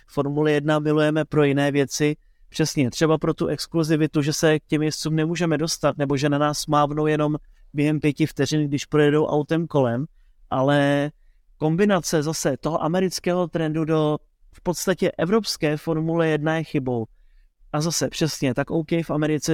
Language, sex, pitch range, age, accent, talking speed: Czech, male, 145-165 Hz, 30-49, native, 160 wpm